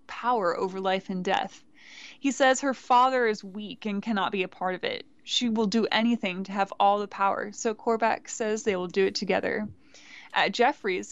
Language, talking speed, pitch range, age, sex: English, 200 wpm, 195-240 Hz, 20-39, female